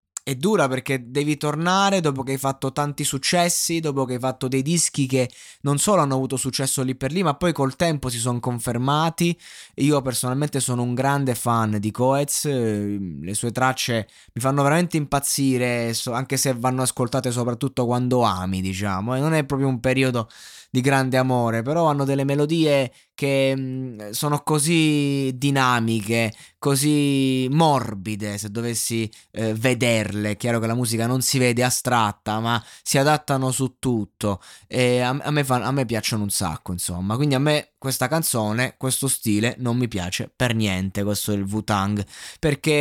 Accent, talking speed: native, 165 wpm